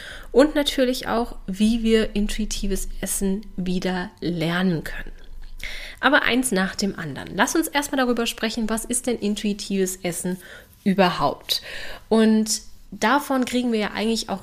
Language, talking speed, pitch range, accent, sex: German, 135 wpm, 185-235 Hz, German, female